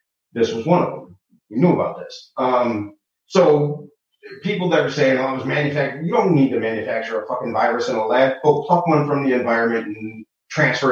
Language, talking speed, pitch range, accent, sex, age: English, 215 wpm, 120-195 Hz, American, male, 30-49